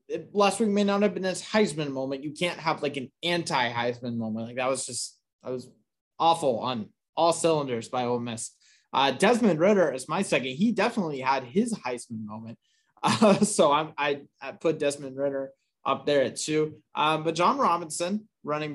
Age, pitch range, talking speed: 20-39, 130-165 Hz, 180 wpm